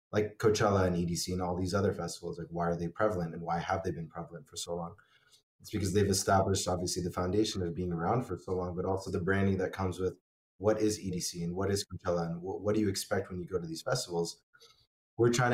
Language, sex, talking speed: English, male, 245 wpm